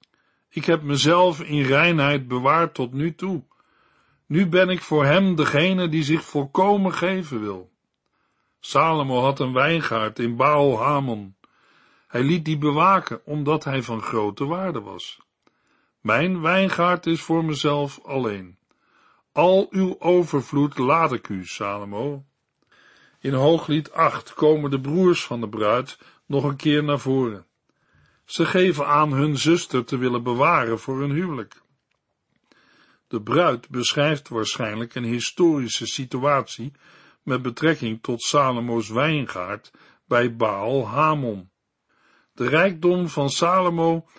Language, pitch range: Dutch, 120-165 Hz